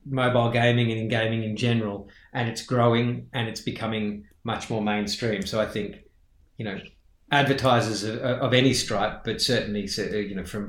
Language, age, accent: English, 30-49, Australian